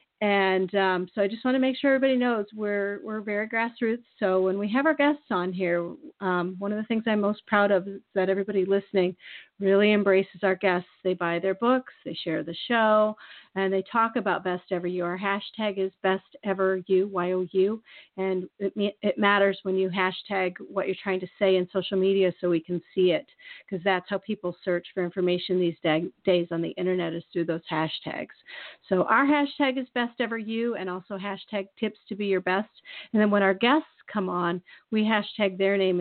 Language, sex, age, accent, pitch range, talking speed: English, female, 40-59, American, 180-215 Hz, 205 wpm